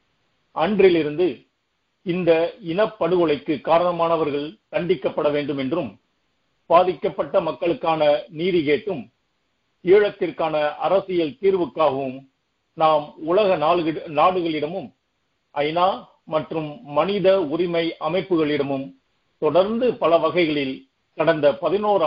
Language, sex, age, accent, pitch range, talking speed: Tamil, male, 50-69, native, 150-190 Hz, 75 wpm